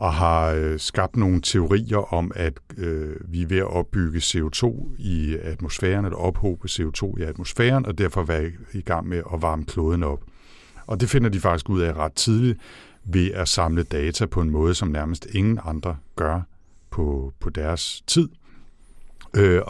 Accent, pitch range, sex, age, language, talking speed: native, 85-105 Hz, male, 60-79, Danish, 175 wpm